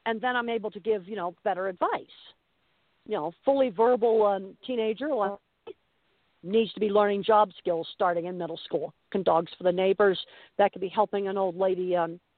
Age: 50-69